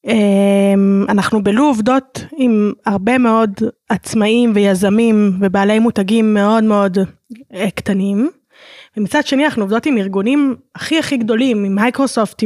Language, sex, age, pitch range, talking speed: Hebrew, female, 20-39, 205-260 Hz, 115 wpm